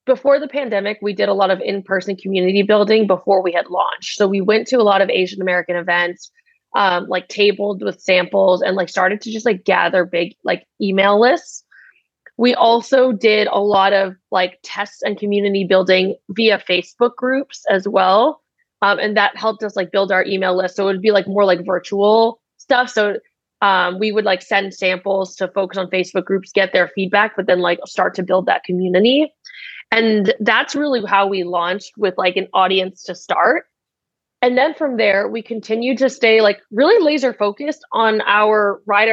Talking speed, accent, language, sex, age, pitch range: 190 wpm, American, English, female, 20-39, 190-235 Hz